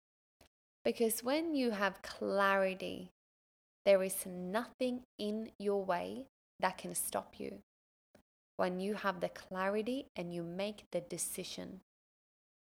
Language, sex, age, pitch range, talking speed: English, female, 20-39, 205-290 Hz, 115 wpm